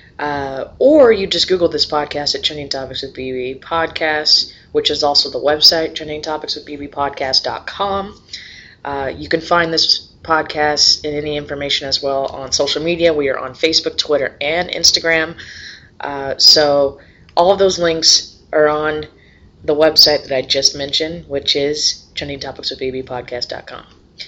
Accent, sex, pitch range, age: American, female, 135-160 Hz, 20-39